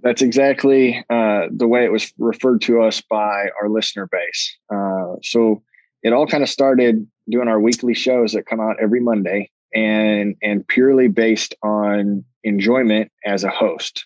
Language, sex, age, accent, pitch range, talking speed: English, male, 20-39, American, 105-115 Hz, 165 wpm